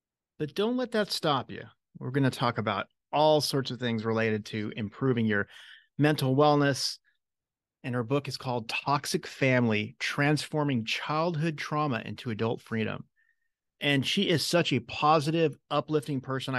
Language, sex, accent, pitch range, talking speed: English, male, American, 120-155 Hz, 150 wpm